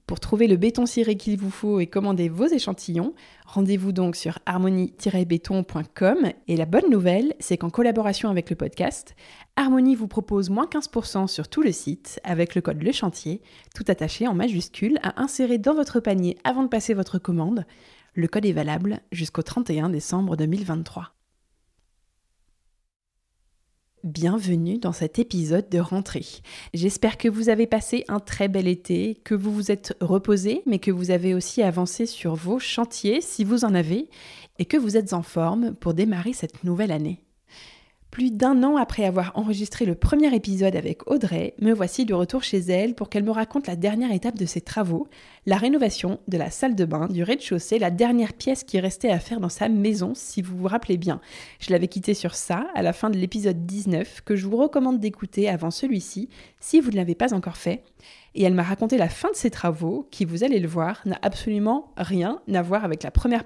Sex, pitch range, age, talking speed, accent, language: female, 175-230 Hz, 20-39, 190 wpm, French, French